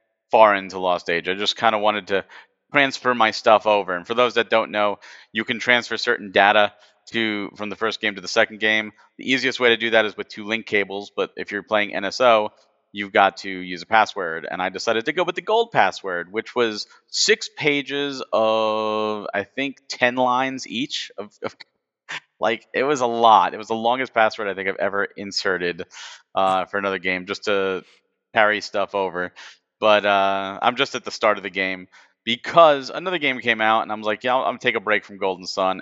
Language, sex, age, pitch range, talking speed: English, male, 30-49, 100-125 Hz, 220 wpm